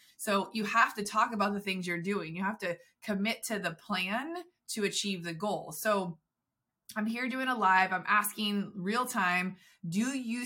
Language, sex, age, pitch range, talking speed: English, female, 20-39, 175-220 Hz, 190 wpm